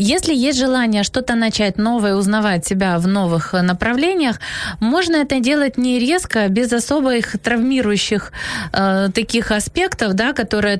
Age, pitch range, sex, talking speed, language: 20-39, 210-260 Hz, female, 135 wpm, Ukrainian